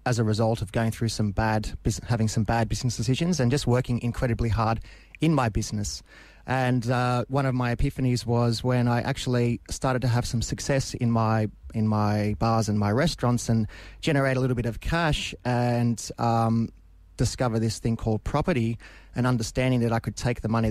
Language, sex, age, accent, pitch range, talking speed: English, male, 30-49, Australian, 110-125 Hz, 190 wpm